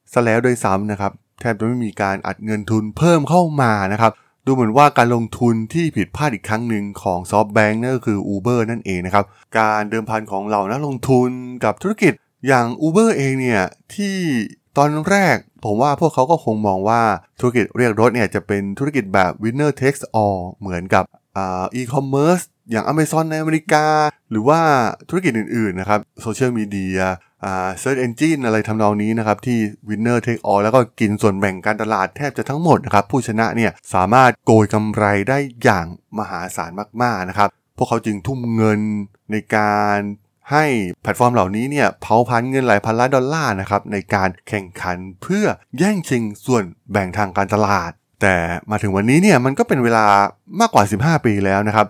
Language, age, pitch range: Thai, 20-39, 100-130 Hz